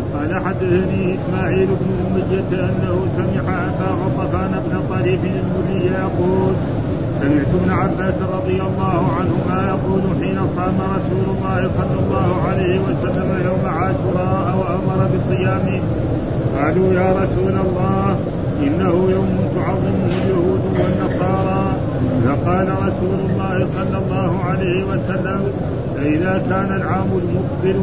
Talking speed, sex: 110 wpm, male